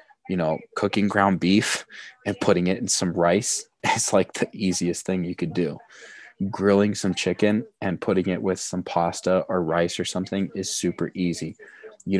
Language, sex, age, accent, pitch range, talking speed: English, male, 20-39, American, 85-100 Hz, 175 wpm